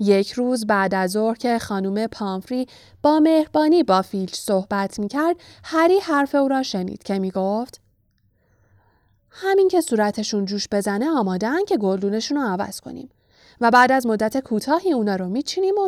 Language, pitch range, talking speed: Persian, 190-255 Hz, 155 wpm